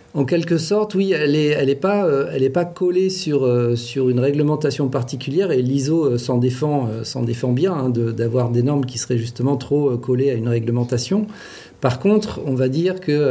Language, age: French, 50-69